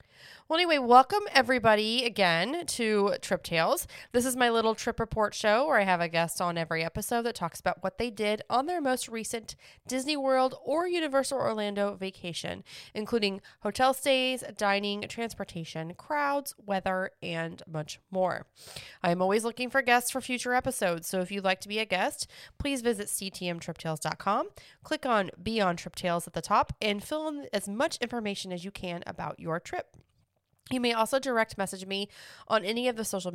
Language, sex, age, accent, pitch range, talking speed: English, female, 20-39, American, 175-230 Hz, 180 wpm